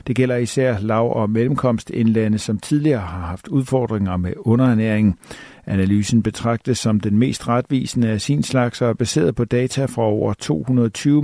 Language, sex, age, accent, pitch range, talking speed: Danish, male, 50-69, native, 105-130 Hz, 160 wpm